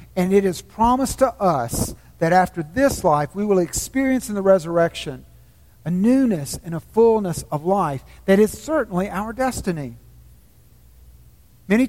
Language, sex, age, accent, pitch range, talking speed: English, male, 50-69, American, 130-220 Hz, 145 wpm